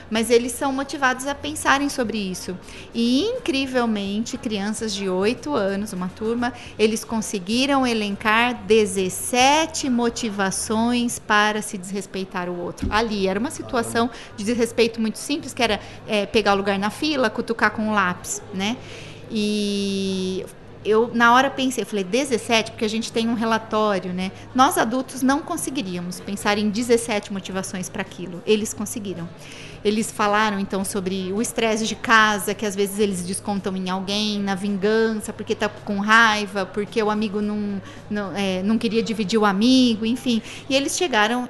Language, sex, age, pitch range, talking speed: Portuguese, female, 30-49, 200-245 Hz, 155 wpm